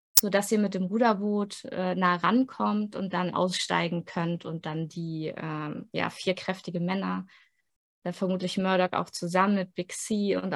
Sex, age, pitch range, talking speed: female, 20-39, 175-215 Hz, 160 wpm